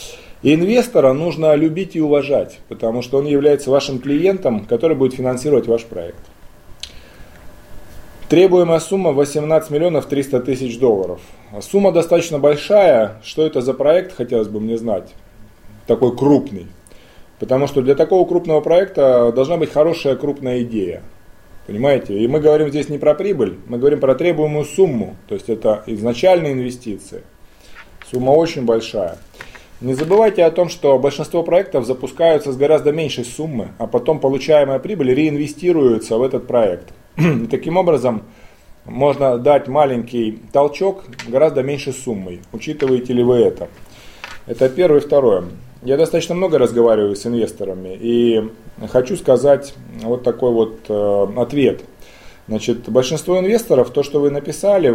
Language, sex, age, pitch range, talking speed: Russian, male, 20-39, 120-155 Hz, 140 wpm